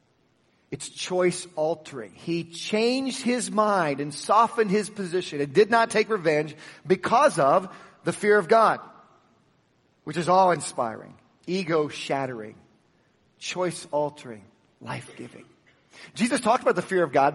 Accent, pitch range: American, 160-215 Hz